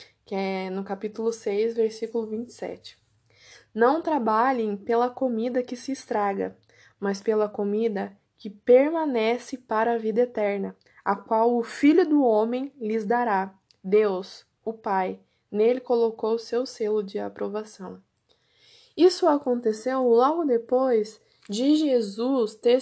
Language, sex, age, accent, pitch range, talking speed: Portuguese, female, 20-39, Brazilian, 220-265 Hz, 125 wpm